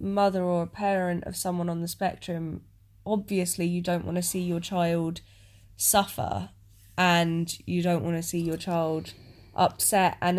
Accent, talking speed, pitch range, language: British, 160 wpm, 150-200 Hz, English